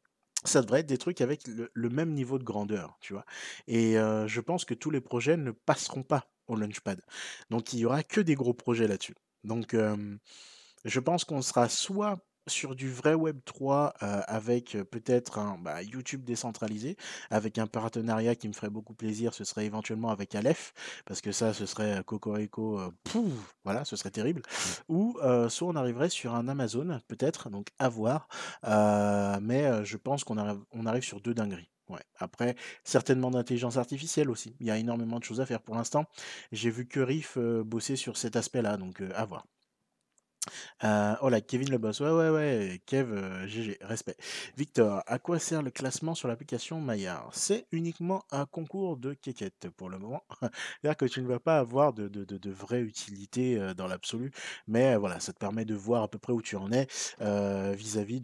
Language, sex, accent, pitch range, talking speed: French, male, French, 105-135 Hz, 200 wpm